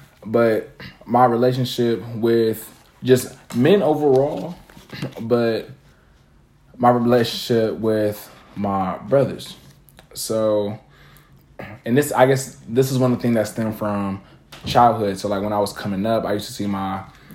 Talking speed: 140 wpm